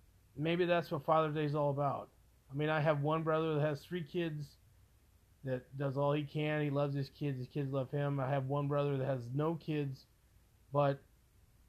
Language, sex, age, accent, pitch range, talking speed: English, male, 30-49, American, 105-155 Hz, 205 wpm